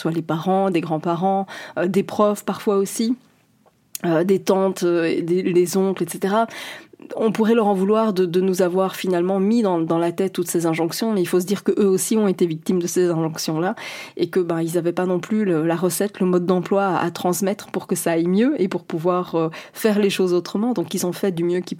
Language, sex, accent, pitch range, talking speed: French, female, French, 175-215 Hz, 230 wpm